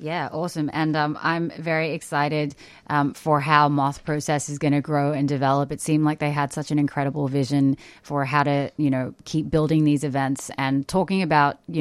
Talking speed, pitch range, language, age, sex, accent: 205 wpm, 135-150 Hz, English, 20-39, female, American